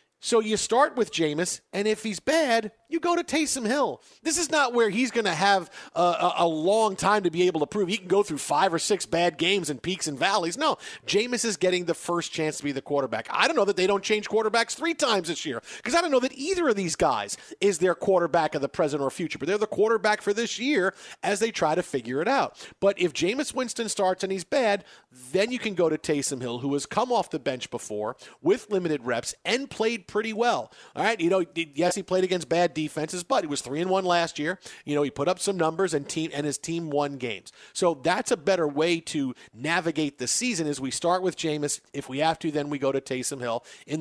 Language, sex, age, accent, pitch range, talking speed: English, male, 40-59, American, 150-210 Hz, 250 wpm